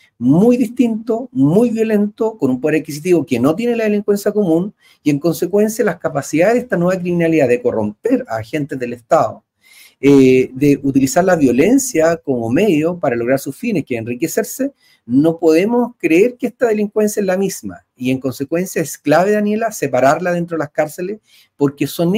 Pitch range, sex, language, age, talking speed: 150-225 Hz, male, Spanish, 40-59, 175 wpm